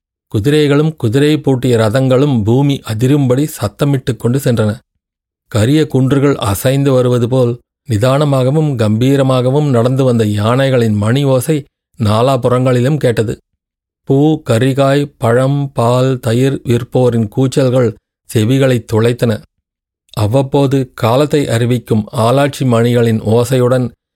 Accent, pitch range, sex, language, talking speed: native, 115-135 Hz, male, Tamil, 95 wpm